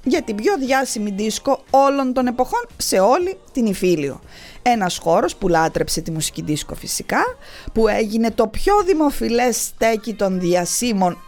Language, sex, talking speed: English, female, 150 wpm